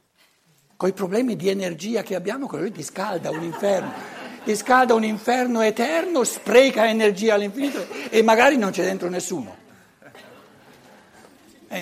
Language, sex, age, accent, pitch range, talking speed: Italian, male, 60-79, native, 165-230 Hz, 140 wpm